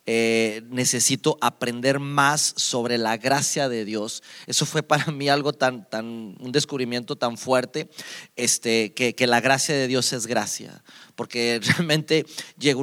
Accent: Mexican